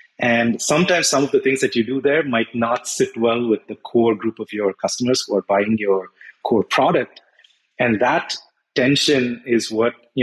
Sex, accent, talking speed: male, Indian, 195 wpm